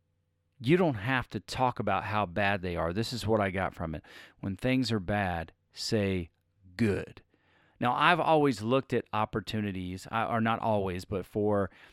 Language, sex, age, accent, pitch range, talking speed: English, male, 40-59, American, 95-120 Hz, 170 wpm